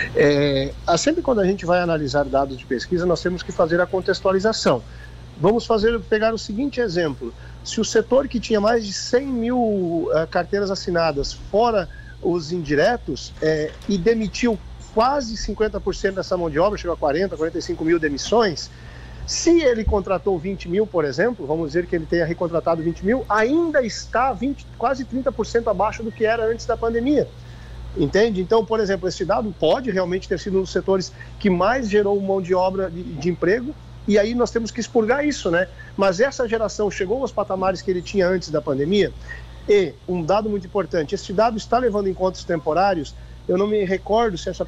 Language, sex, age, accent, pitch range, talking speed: Portuguese, male, 50-69, Brazilian, 165-215 Hz, 180 wpm